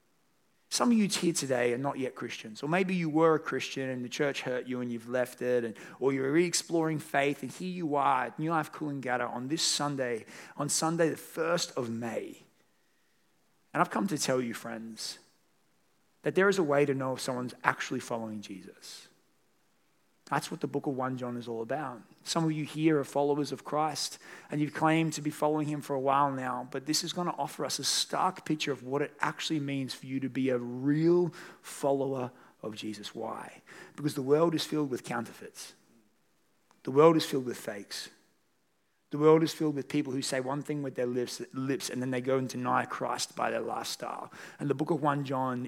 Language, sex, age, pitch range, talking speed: English, male, 30-49, 125-155 Hz, 215 wpm